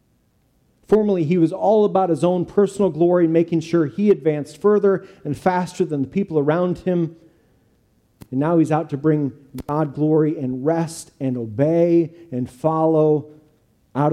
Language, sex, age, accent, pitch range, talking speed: English, male, 40-59, American, 130-180 Hz, 155 wpm